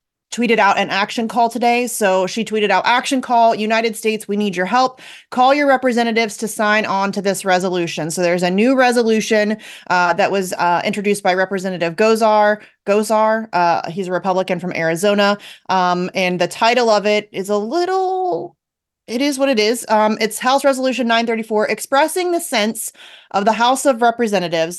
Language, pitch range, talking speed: English, 185-230 Hz, 180 wpm